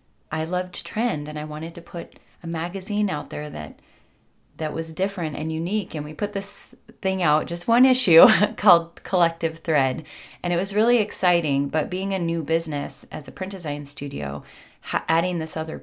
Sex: female